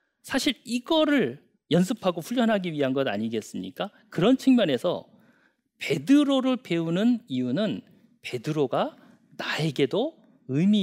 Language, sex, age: Korean, male, 40-59